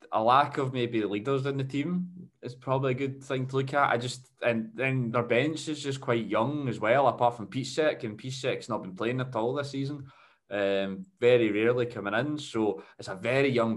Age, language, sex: 20-39, English, male